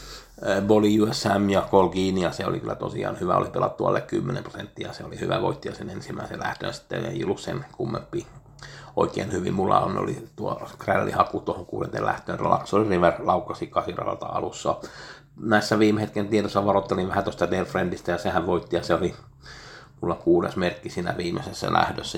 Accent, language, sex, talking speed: native, Finnish, male, 155 wpm